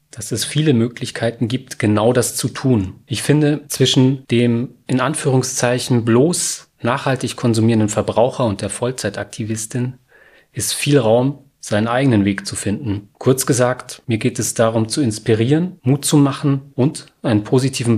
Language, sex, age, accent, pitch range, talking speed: German, male, 30-49, German, 110-140 Hz, 145 wpm